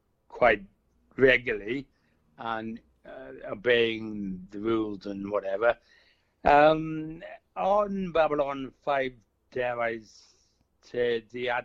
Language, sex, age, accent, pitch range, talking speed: English, male, 60-79, British, 110-145 Hz, 95 wpm